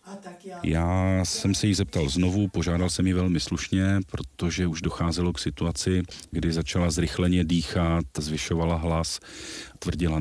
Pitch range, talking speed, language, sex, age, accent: 85-95 Hz, 135 wpm, Czech, male, 40-59, native